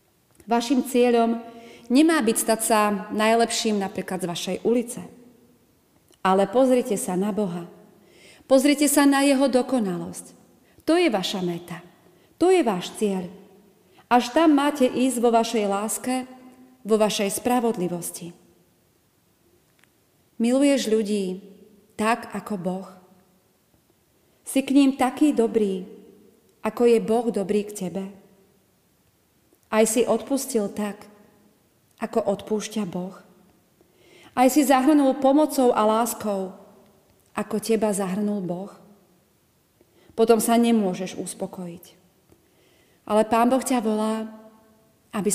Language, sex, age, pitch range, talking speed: Slovak, female, 30-49, 195-255 Hz, 110 wpm